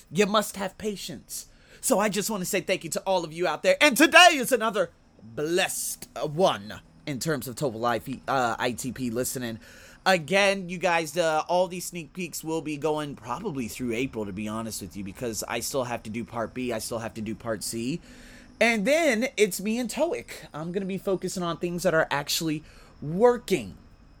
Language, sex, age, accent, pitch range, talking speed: English, male, 30-49, American, 125-185 Hz, 205 wpm